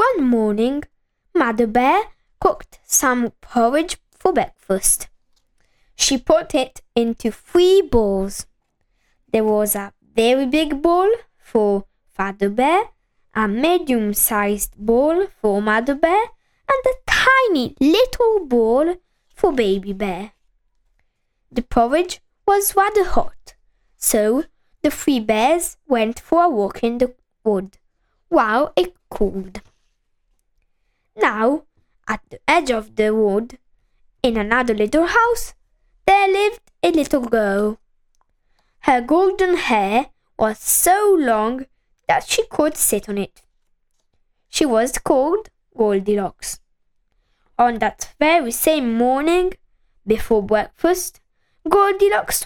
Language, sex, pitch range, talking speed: Italian, female, 210-340 Hz, 110 wpm